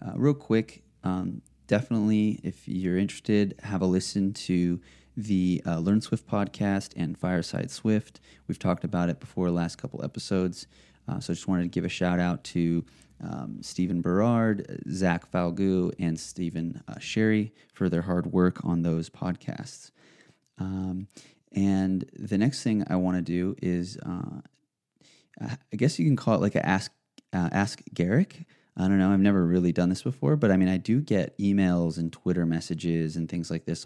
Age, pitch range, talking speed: 30-49, 85-100 Hz, 180 wpm